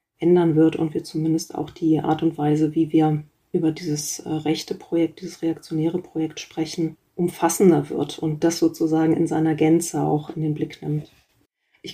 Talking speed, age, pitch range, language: 170 wpm, 30-49, 160-180 Hz, German